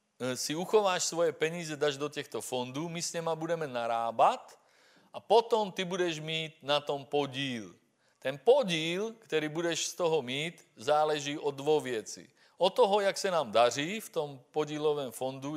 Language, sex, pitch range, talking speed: Czech, male, 135-170 Hz, 160 wpm